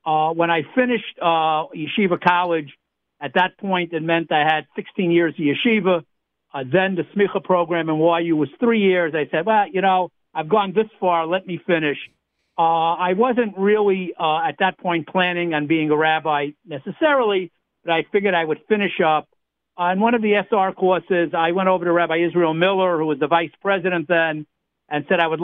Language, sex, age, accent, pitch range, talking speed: English, male, 60-79, American, 155-190 Hz, 200 wpm